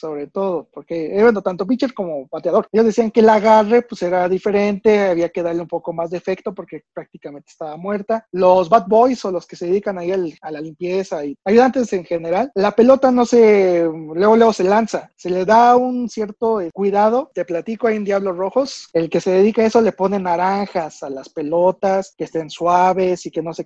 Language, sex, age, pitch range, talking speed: Spanish, male, 30-49, 175-225 Hz, 220 wpm